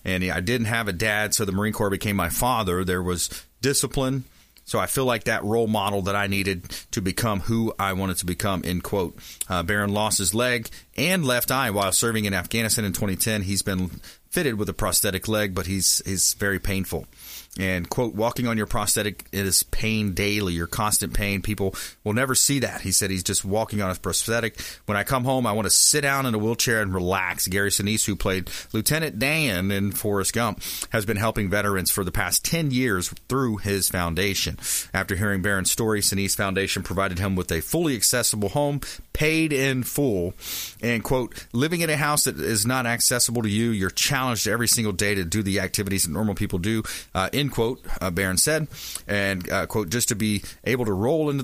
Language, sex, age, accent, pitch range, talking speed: English, male, 30-49, American, 95-115 Hz, 210 wpm